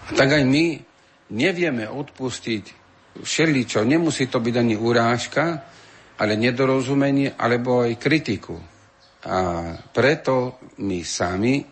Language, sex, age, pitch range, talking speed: Slovak, male, 50-69, 95-120 Hz, 110 wpm